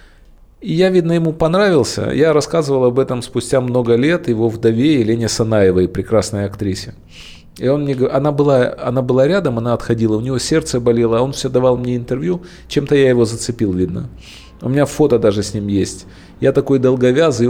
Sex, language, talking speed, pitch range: male, Ukrainian, 180 wpm, 95-130 Hz